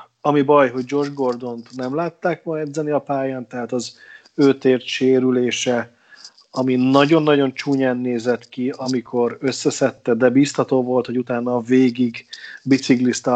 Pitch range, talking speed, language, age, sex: 125-135 Hz, 140 wpm, Hungarian, 40-59, male